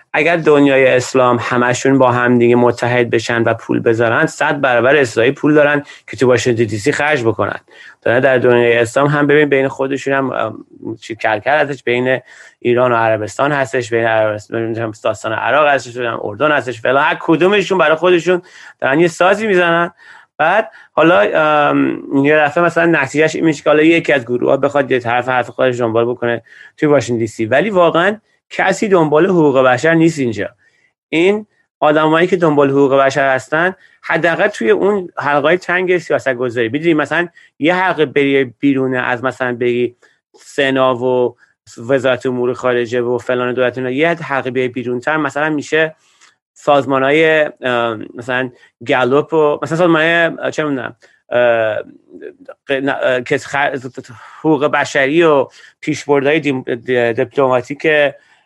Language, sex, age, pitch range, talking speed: Persian, male, 30-49, 125-155 Hz, 135 wpm